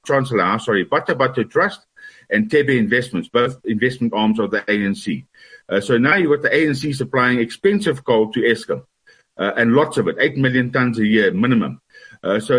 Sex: male